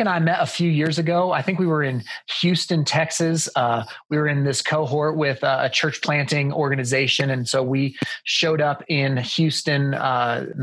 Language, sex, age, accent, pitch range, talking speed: English, male, 30-49, American, 135-155 Hz, 185 wpm